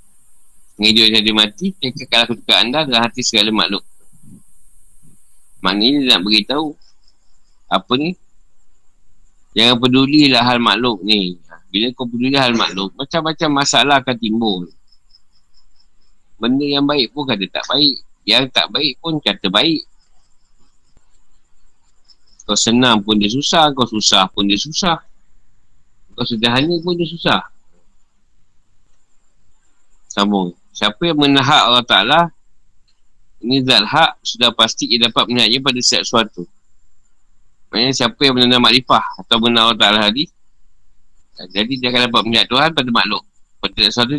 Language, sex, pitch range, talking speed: Malay, male, 100-130 Hz, 130 wpm